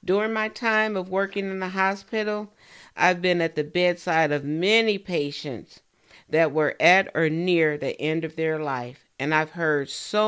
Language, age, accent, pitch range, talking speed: English, 50-69, American, 150-190 Hz, 175 wpm